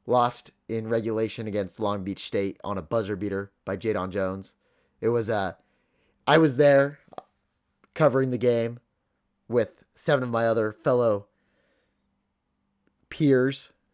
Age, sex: 30-49, male